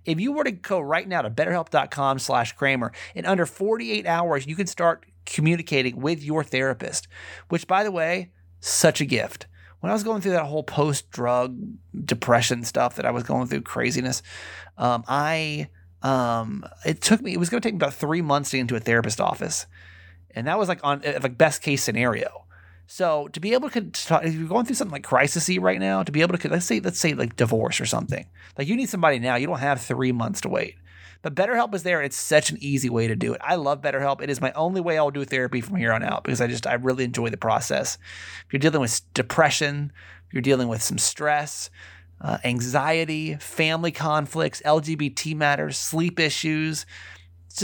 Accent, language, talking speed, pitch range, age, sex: American, English, 215 wpm, 120-170 Hz, 30-49, male